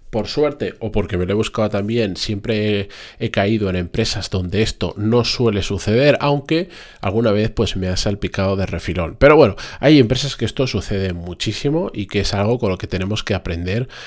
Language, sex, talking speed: Spanish, male, 200 wpm